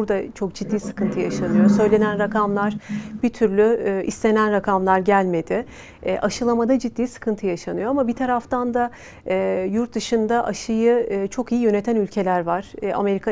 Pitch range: 190-220 Hz